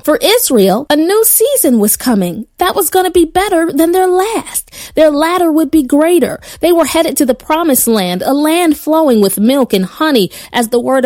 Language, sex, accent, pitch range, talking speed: English, female, American, 230-315 Hz, 205 wpm